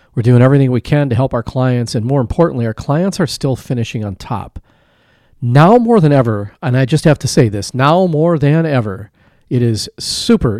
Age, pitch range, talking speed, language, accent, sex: 40-59, 115-140 Hz, 210 wpm, English, American, male